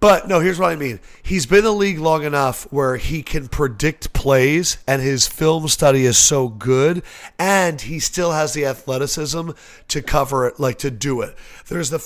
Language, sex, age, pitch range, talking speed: English, male, 40-59, 130-160 Hz, 200 wpm